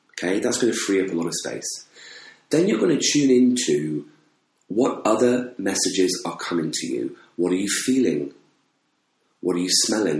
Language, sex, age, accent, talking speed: English, male, 30-49, British, 175 wpm